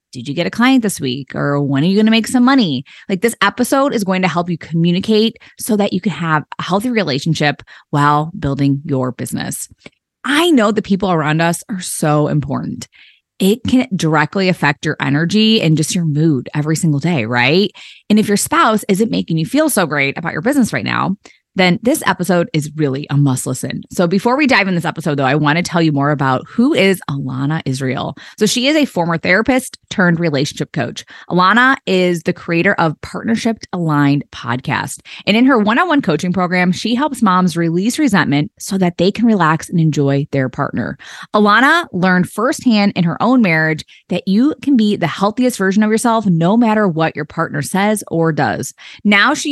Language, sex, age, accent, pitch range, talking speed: English, female, 20-39, American, 155-215 Hz, 200 wpm